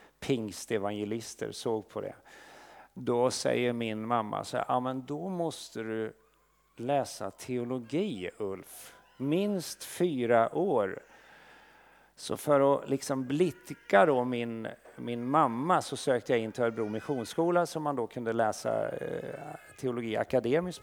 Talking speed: 125 wpm